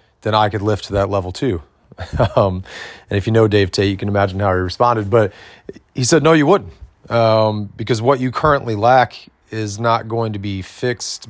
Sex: male